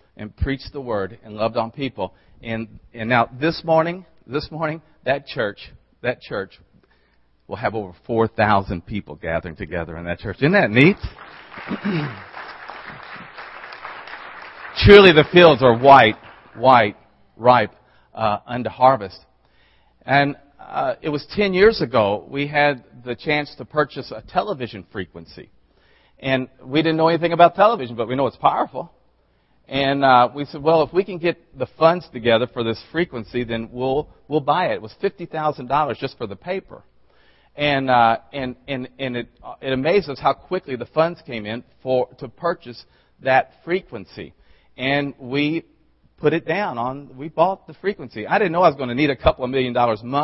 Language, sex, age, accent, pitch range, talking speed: English, male, 50-69, American, 115-155 Hz, 165 wpm